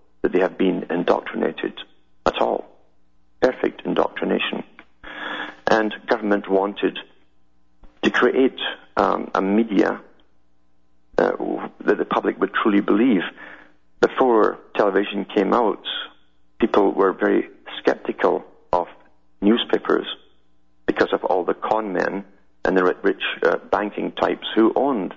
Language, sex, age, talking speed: English, male, 50-69, 115 wpm